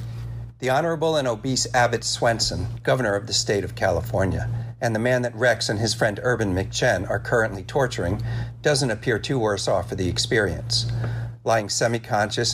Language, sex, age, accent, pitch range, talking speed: English, male, 50-69, American, 110-120 Hz, 170 wpm